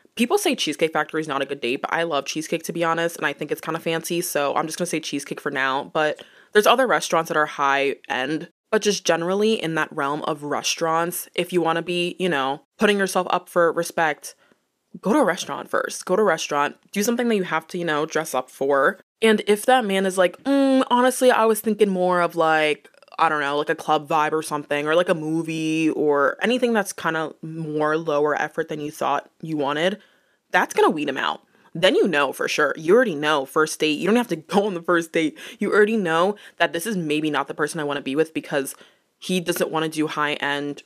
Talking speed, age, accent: 245 wpm, 20-39, American